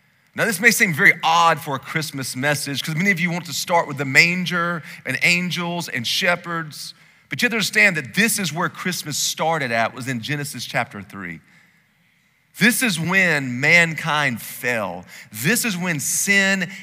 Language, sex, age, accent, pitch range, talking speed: English, male, 40-59, American, 135-190 Hz, 180 wpm